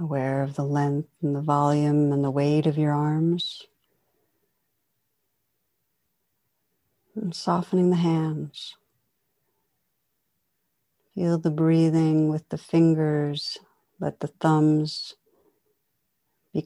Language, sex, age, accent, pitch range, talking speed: English, female, 60-79, American, 145-165 Hz, 95 wpm